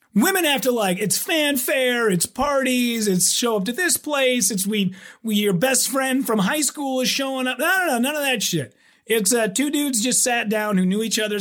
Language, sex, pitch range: English, male, 175-250 Hz